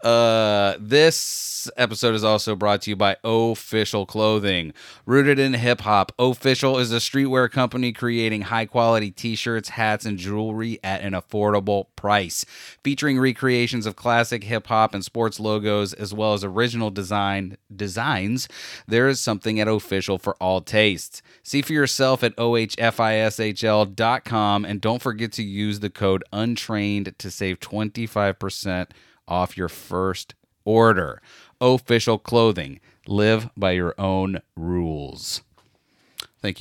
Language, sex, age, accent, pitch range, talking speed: English, male, 30-49, American, 100-120 Hz, 135 wpm